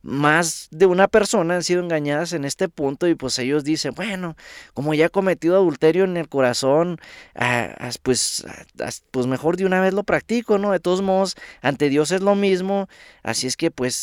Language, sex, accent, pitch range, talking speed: English, male, Mexican, 120-160 Hz, 190 wpm